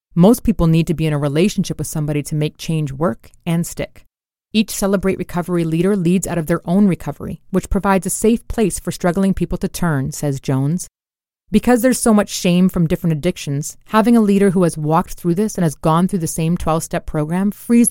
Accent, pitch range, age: American, 160-205 Hz, 30-49